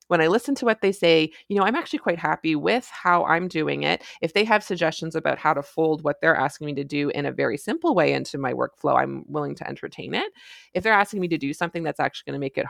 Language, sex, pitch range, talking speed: English, female, 155-225 Hz, 275 wpm